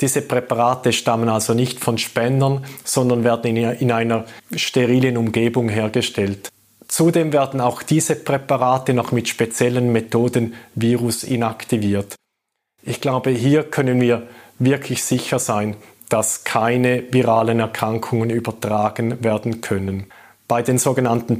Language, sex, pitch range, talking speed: German, male, 115-135 Hz, 120 wpm